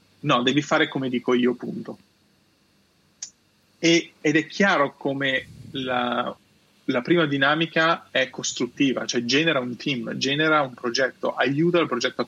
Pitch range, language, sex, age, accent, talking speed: 130-165 Hz, Italian, male, 20-39, native, 135 wpm